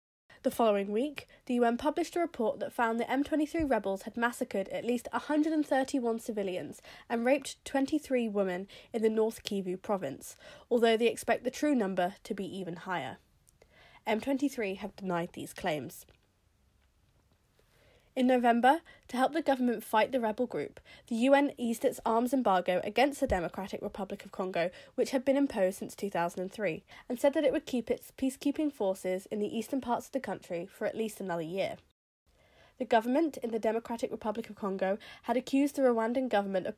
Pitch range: 190-260 Hz